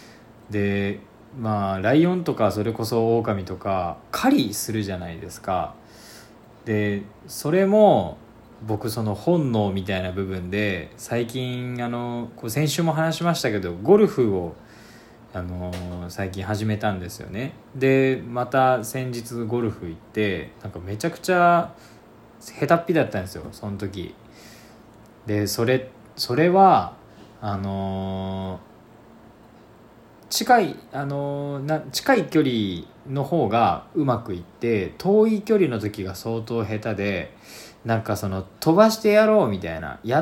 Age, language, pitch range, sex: 20-39, Japanese, 100-130 Hz, male